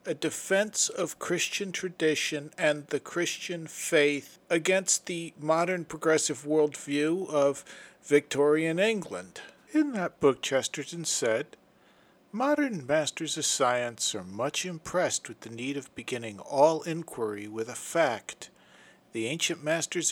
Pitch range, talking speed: 150-195 Hz, 125 wpm